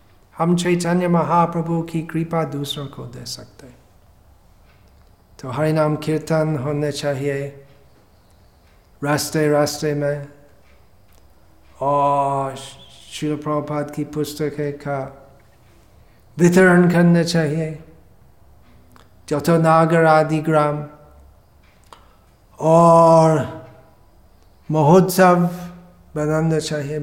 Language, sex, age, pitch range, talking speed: Hindi, male, 50-69, 110-165 Hz, 70 wpm